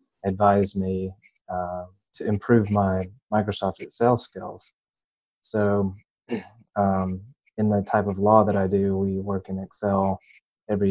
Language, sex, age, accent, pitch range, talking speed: English, male, 20-39, American, 95-105 Hz, 130 wpm